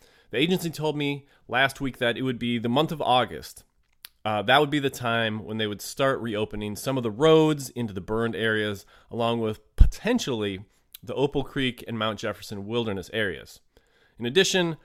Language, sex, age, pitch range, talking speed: English, male, 30-49, 110-140 Hz, 185 wpm